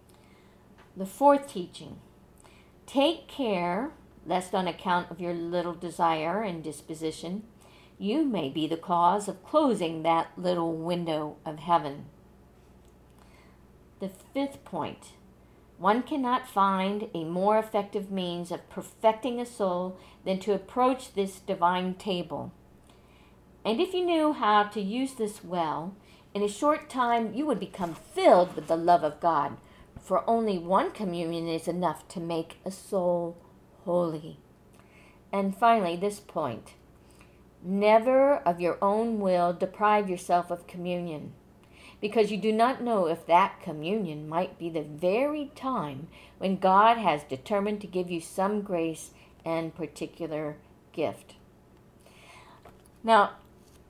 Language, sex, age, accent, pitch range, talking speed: English, female, 50-69, American, 165-210 Hz, 130 wpm